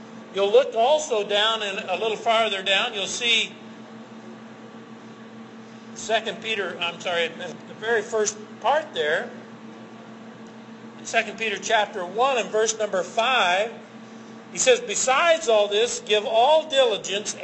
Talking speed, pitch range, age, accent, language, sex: 125 wpm, 220-290 Hz, 50-69, American, English, male